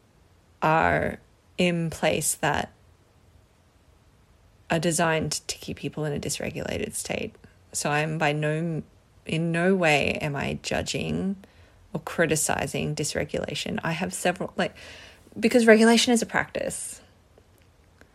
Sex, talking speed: female, 115 wpm